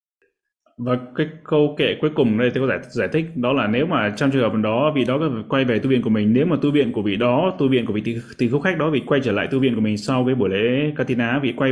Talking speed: 290 wpm